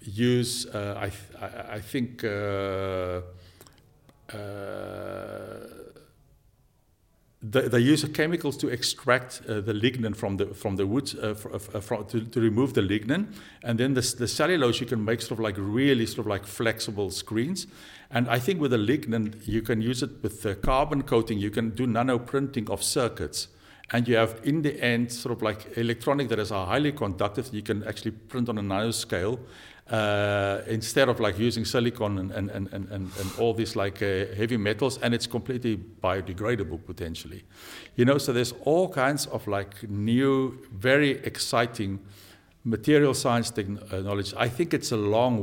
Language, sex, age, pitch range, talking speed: Dutch, male, 50-69, 100-125 Hz, 175 wpm